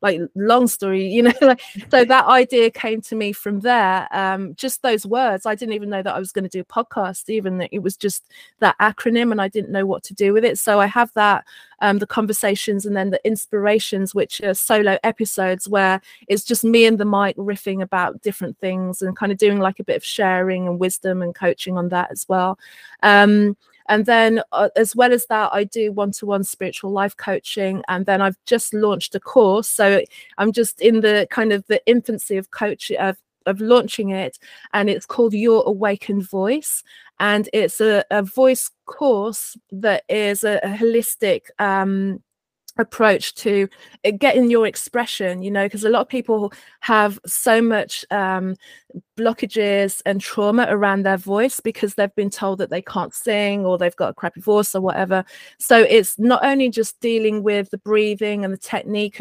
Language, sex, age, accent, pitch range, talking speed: English, female, 20-39, British, 195-225 Hz, 195 wpm